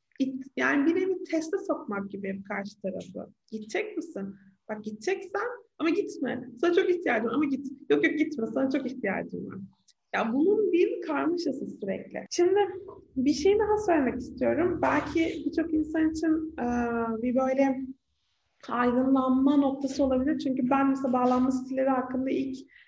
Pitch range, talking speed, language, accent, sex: 245-315 Hz, 140 wpm, Turkish, native, female